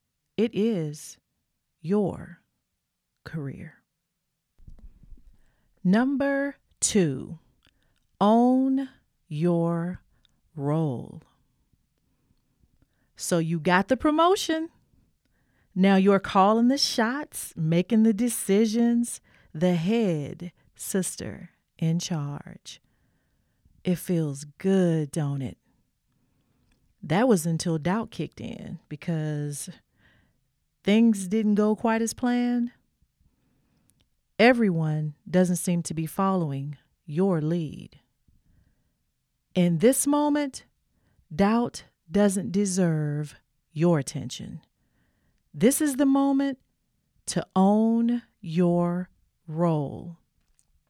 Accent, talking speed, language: American, 80 wpm, English